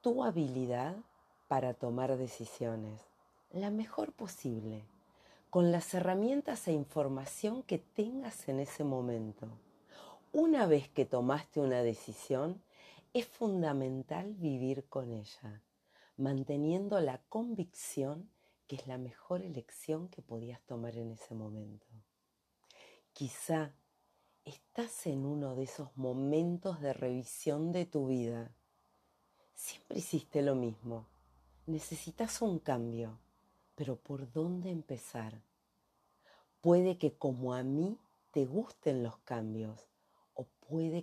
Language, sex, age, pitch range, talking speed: Spanish, female, 40-59, 125-175 Hz, 115 wpm